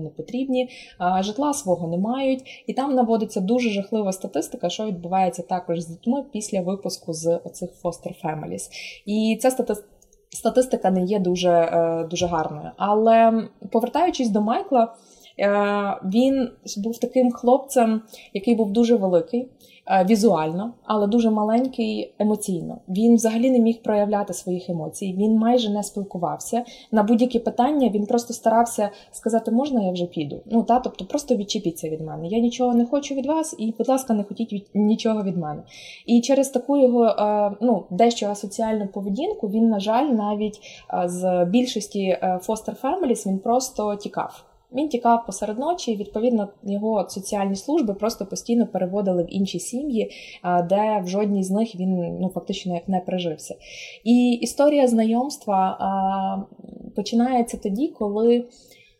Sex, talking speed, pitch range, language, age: female, 150 wpm, 185-235 Hz, Ukrainian, 20-39